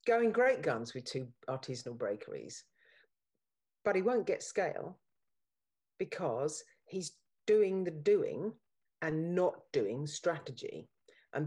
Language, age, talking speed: English, 50-69, 115 wpm